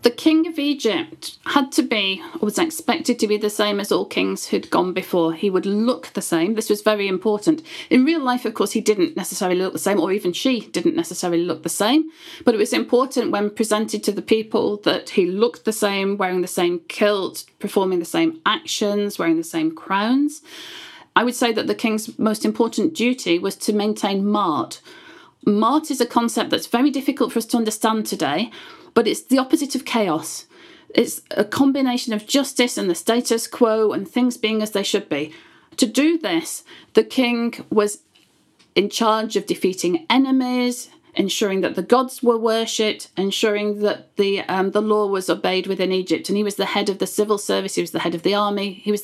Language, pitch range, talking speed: English, 200-265 Hz, 200 wpm